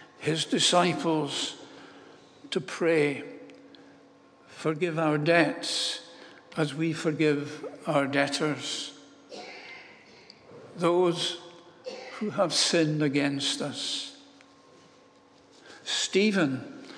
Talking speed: 65 wpm